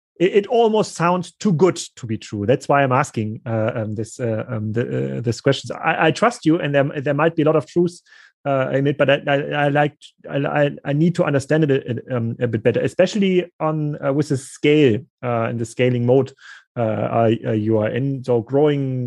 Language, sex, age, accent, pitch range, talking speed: English, male, 30-49, German, 125-150 Hz, 225 wpm